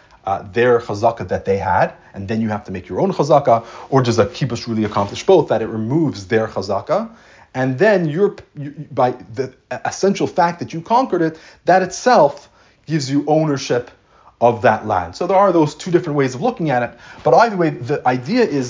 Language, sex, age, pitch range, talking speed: English, male, 30-49, 115-170 Hz, 205 wpm